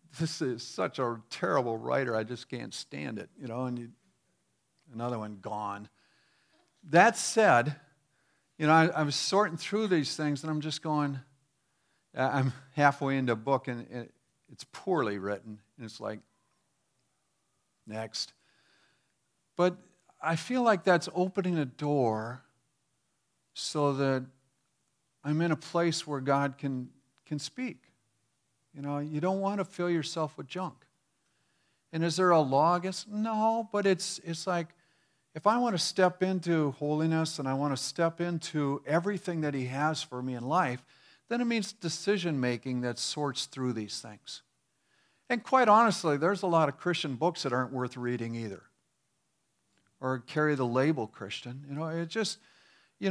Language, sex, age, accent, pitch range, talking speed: English, male, 50-69, American, 130-175 Hz, 160 wpm